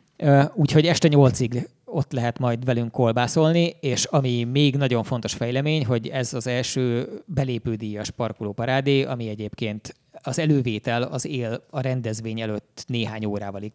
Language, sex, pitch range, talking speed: Hungarian, male, 110-135 Hz, 135 wpm